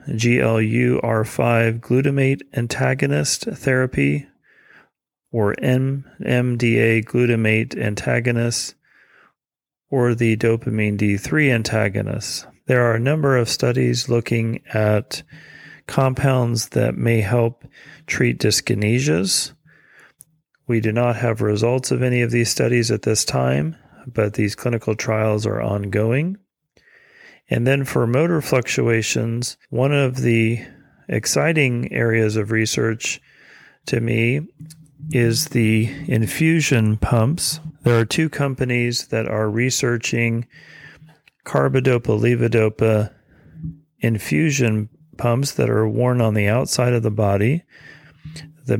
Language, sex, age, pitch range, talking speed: English, male, 40-59, 110-140 Hz, 105 wpm